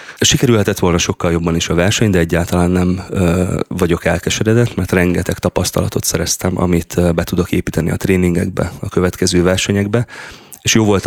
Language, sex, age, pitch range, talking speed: Hungarian, male, 30-49, 85-95 Hz, 150 wpm